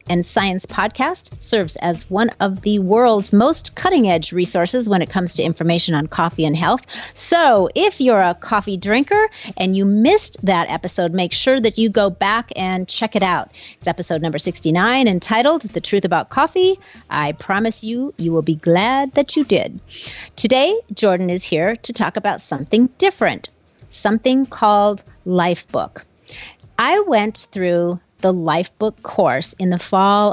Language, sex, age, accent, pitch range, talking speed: English, female, 40-59, American, 175-230 Hz, 165 wpm